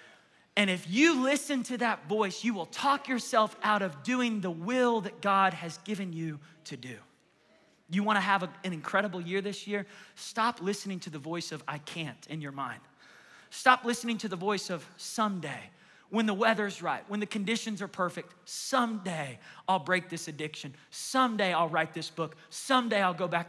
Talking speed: 185 wpm